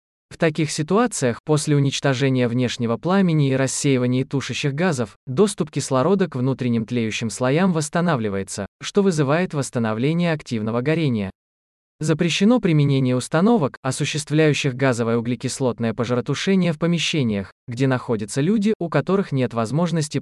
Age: 20-39